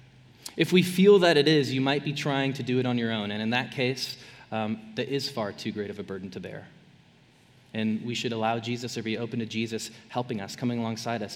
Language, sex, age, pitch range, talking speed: English, male, 20-39, 120-145 Hz, 245 wpm